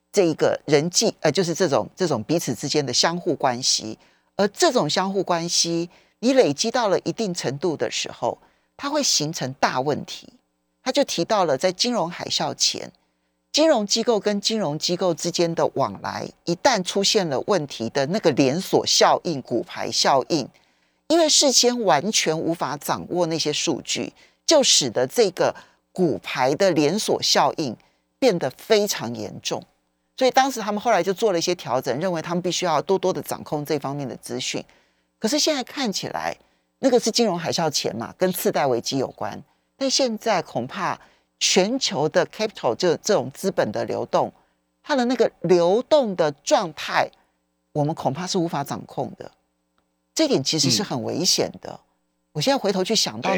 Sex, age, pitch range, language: male, 40-59, 140-215 Hz, Chinese